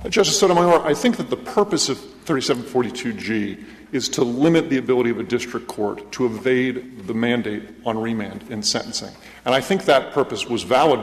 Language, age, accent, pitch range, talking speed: English, 40-59, American, 120-150 Hz, 180 wpm